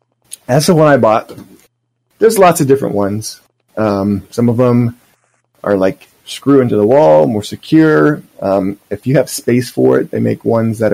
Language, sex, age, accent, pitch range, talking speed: English, male, 20-39, American, 105-125 Hz, 180 wpm